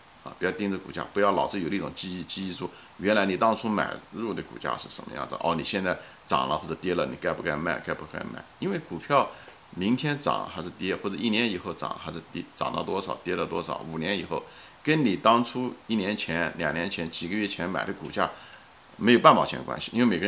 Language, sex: Chinese, male